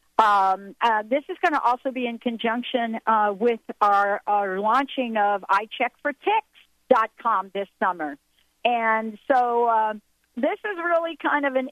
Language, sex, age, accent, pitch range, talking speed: English, female, 50-69, American, 190-240 Hz, 150 wpm